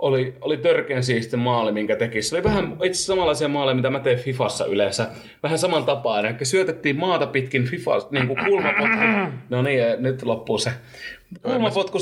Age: 30-49